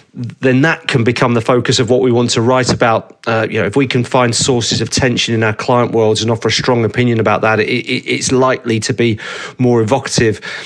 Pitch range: 115-130 Hz